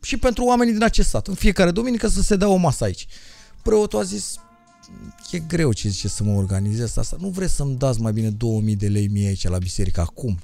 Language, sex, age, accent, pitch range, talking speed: Romanian, male, 30-49, native, 105-170 Hz, 230 wpm